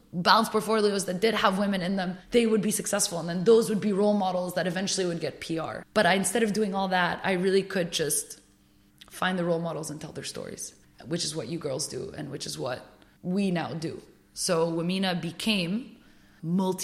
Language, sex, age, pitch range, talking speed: English, female, 20-39, 165-190 Hz, 215 wpm